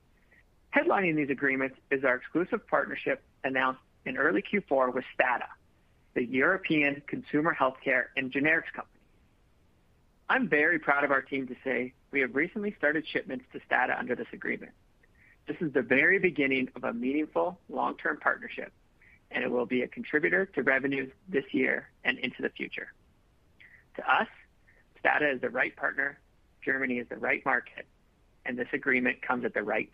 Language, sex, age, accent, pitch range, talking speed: English, male, 40-59, American, 125-160 Hz, 160 wpm